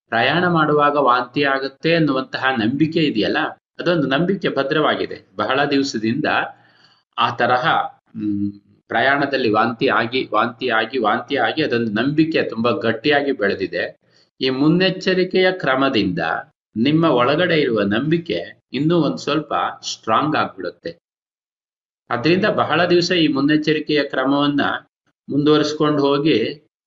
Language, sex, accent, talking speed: Kannada, male, native, 105 wpm